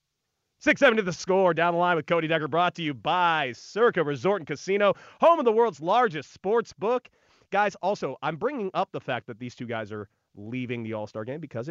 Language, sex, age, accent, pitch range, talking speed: English, male, 30-49, American, 125-215 Hz, 215 wpm